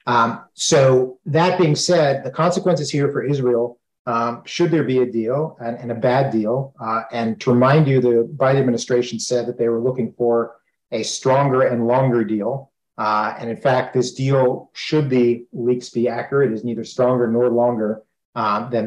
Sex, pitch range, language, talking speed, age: male, 120-145 Hz, English, 185 wpm, 40-59